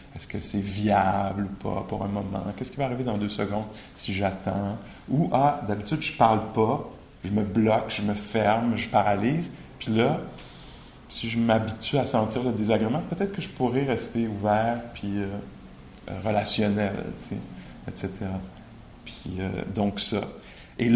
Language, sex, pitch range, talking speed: English, male, 100-120 Hz, 165 wpm